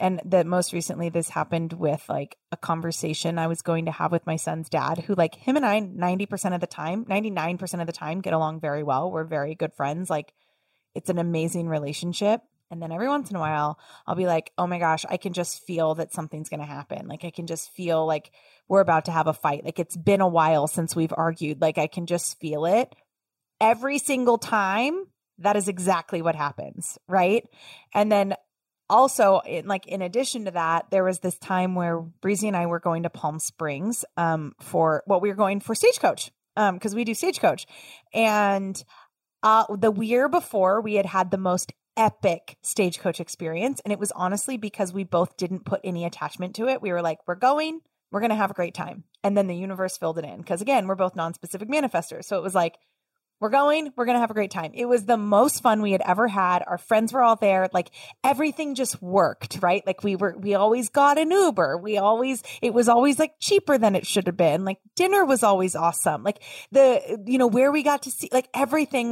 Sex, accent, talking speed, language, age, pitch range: female, American, 225 wpm, English, 20-39, 165-220 Hz